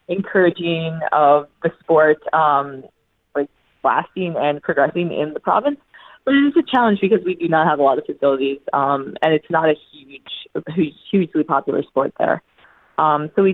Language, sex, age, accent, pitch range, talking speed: English, female, 20-39, American, 150-200 Hz, 170 wpm